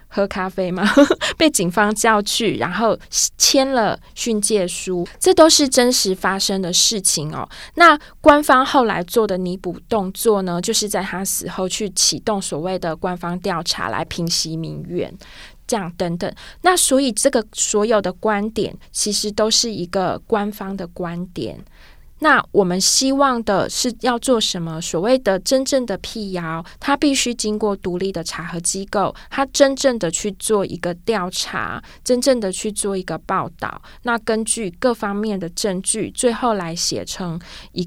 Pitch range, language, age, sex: 180-225 Hz, Chinese, 20-39, female